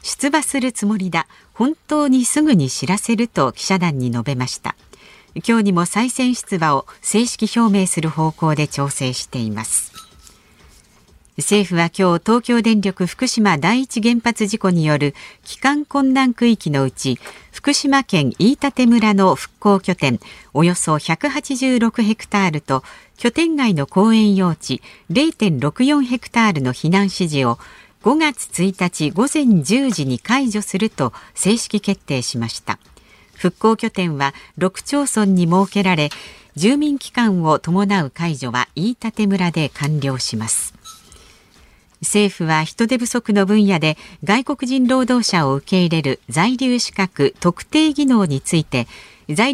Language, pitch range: Japanese, 155-235 Hz